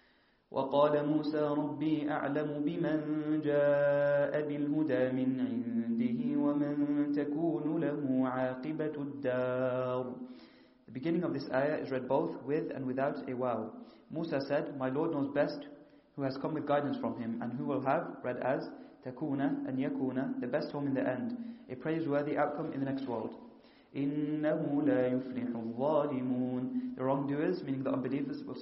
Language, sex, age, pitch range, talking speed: English, male, 30-49, 135-155 Hz, 115 wpm